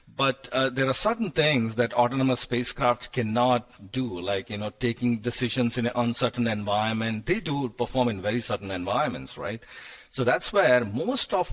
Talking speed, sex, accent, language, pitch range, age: 170 wpm, male, Indian, English, 105-125 Hz, 50-69